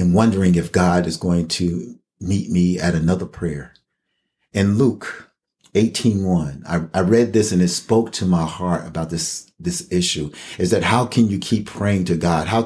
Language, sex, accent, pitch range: English, male, American, 80-95 Hz